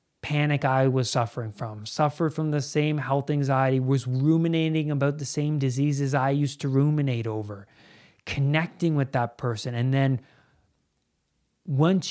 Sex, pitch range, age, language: male, 135-170 Hz, 20-39, English